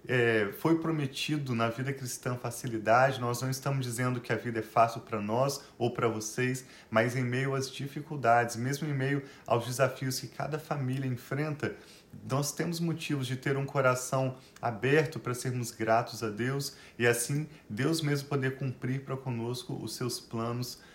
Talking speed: 170 wpm